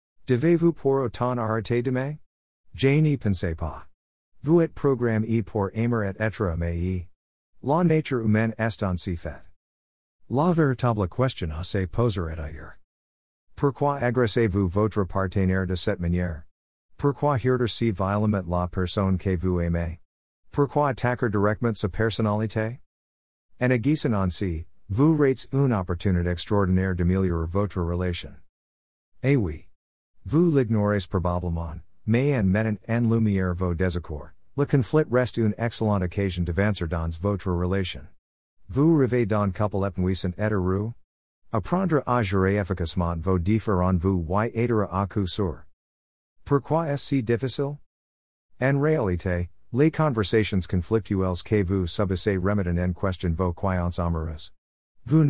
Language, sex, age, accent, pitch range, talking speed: French, male, 50-69, American, 90-115 Hz, 140 wpm